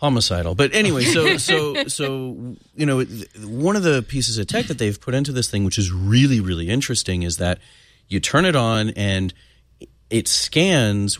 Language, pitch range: English, 95-110 Hz